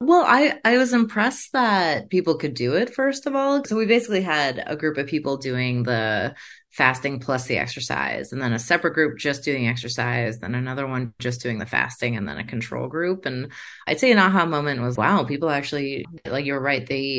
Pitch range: 120-160 Hz